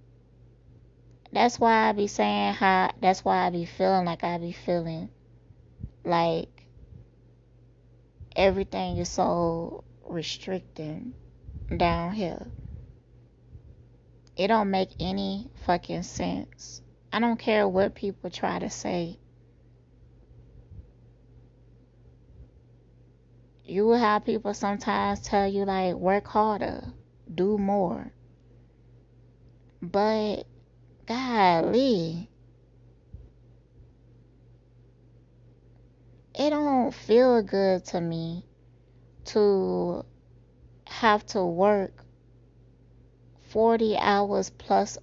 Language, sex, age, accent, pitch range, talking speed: English, female, 20-39, American, 120-195 Hz, 85 wpm